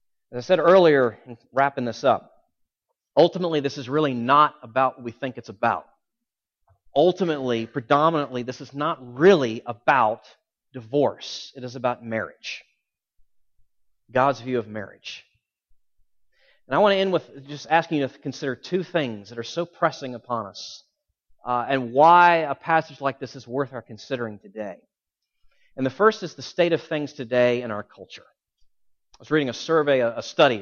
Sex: male